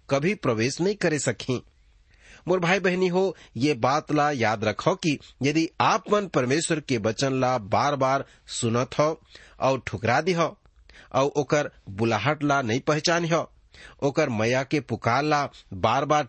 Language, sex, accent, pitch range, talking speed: English, male, Indian, 115-160 Hz, 145 wpm